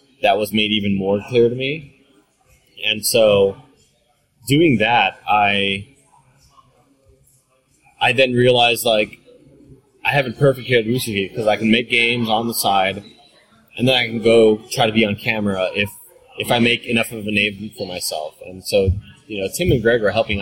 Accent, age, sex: American, 20-39, male